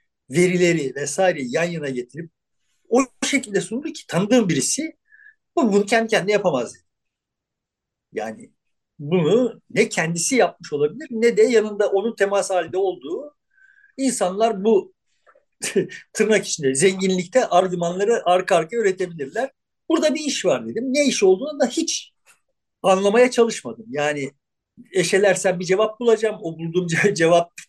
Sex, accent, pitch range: male, native, 170-250 Hz